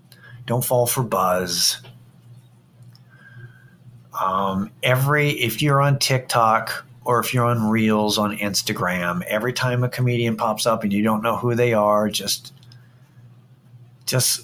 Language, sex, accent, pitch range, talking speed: English, male, American, 115-130 Hz, 135 wpm